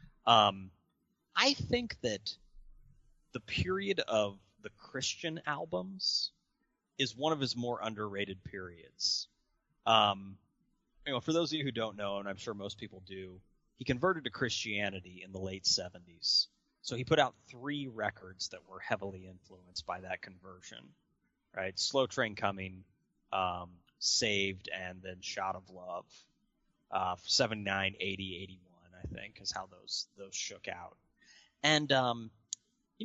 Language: English